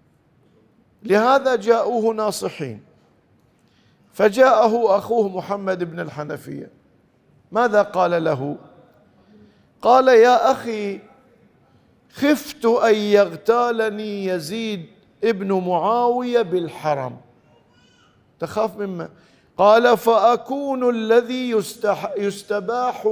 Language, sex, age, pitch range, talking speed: Arabic, male, 50-69, 195-245 Hz, 70 wpm